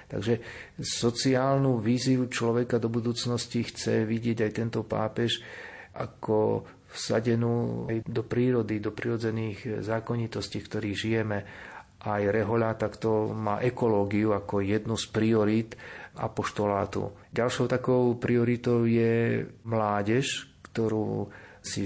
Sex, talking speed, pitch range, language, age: male, 105 wpm, 100-115 Hz, Slovak, 40-59